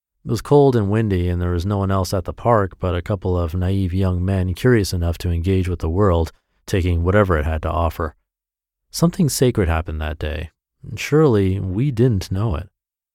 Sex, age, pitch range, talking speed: male, 40-59, 85-115 Hz, 200 wpm